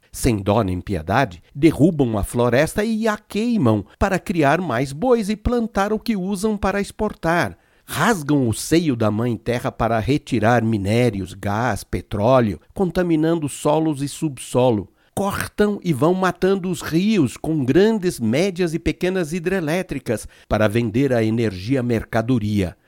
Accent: Brazilian